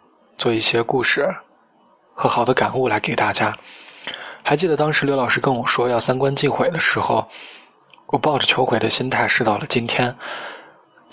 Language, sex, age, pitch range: Chinese, male, 20-39, 120-140 Hz